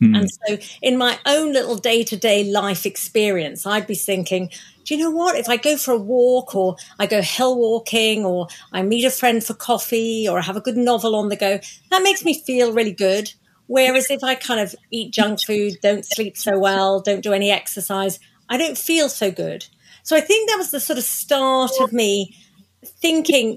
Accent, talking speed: British, 215 wpm